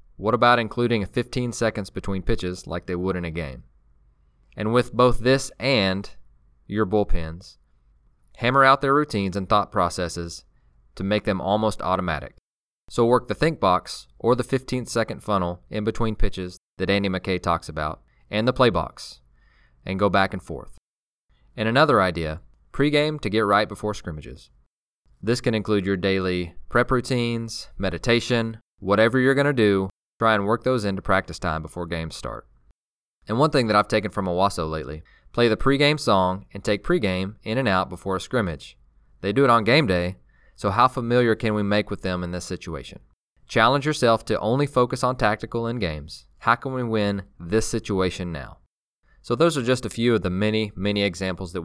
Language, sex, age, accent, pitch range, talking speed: English, male, 20-39, American, 85-115 Hz, 180 wpm